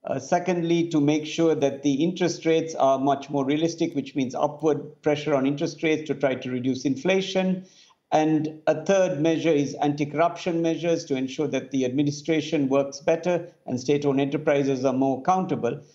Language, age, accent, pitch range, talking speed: English, 60-79, Indian, 140-175 Hz, 170 wpm